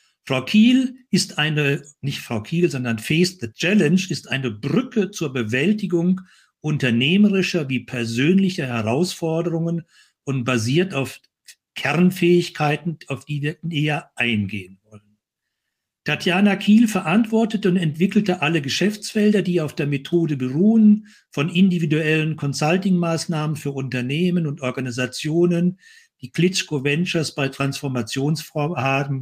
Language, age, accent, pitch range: German, 60-79, German, 130-180 Hz